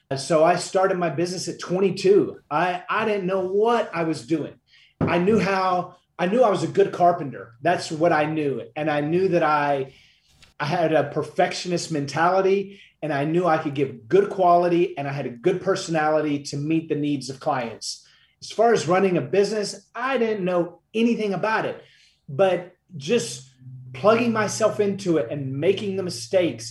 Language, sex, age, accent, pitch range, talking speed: English, male, 30-49, American, 155-195 Hz, 180 wpm